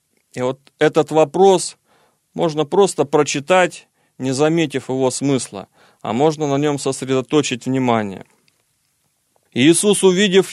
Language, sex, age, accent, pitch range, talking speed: Russian, male, 40-59, native, 135-165 Hz, 110 wpm